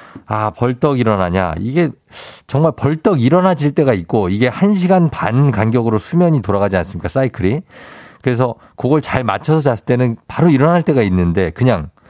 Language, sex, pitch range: Korean, male, 105-150 Hz